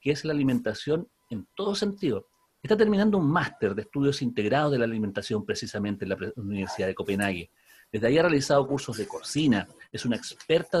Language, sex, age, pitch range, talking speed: Spanish, male, 40-59, 105-155 Hz, 185 wpm